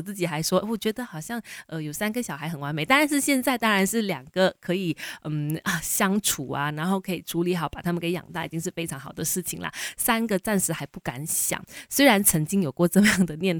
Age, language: 20-39, Chinese